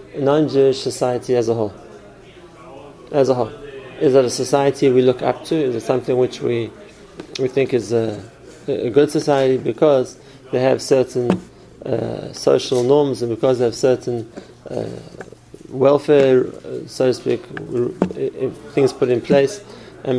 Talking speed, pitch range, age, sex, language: 150 wpm, 120-140 Hz, 30-49, male, English